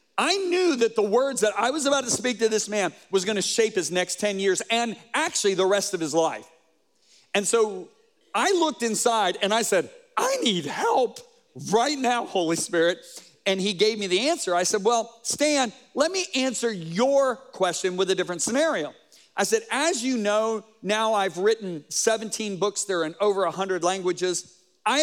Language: English